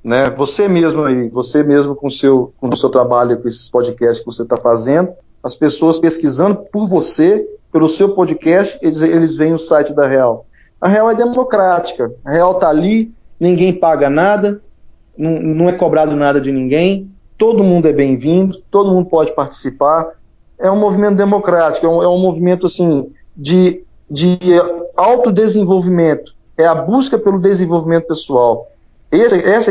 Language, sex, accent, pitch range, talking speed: Portuguese, male, Brazilian, 145-195 Hz, 160 wpm